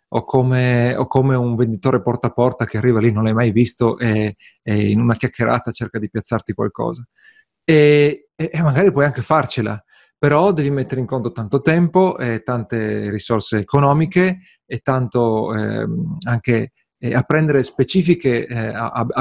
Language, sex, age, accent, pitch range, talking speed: Italian, male, 40-59, native, 115-145 Hz, 155 wpm